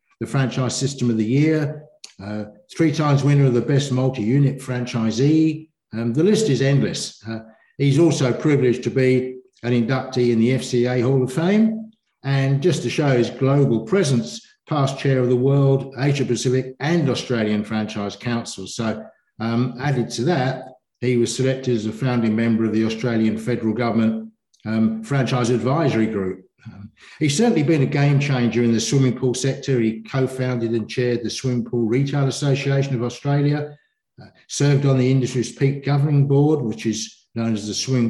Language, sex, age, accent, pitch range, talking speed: English, male, 60-79, British, 115-140 Hz, 170 wpm